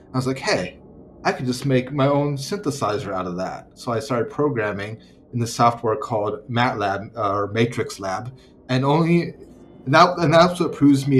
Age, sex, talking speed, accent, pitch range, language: 30-49, male, 195 wpm, American, 110-135 Hz, English